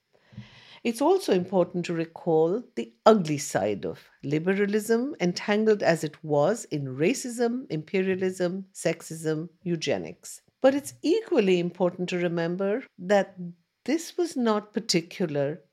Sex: female